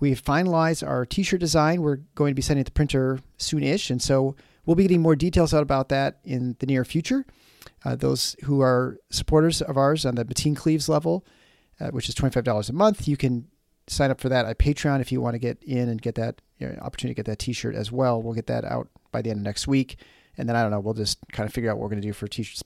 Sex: male